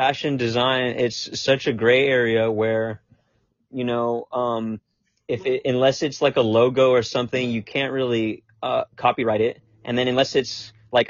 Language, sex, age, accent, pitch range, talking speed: English, male, 30-49, American, 115-130 Hz, 170 wpm